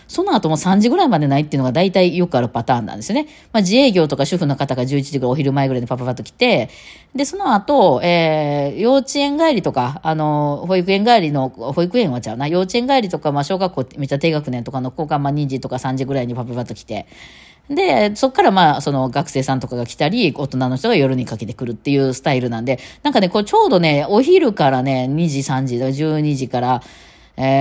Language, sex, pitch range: Japanese, female, 130-185 Hz